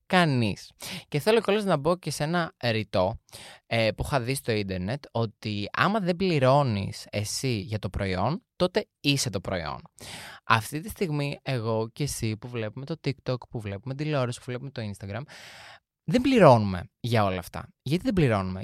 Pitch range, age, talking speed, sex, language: 110-150 Hz, 20-39, 170 wpm, male, Greek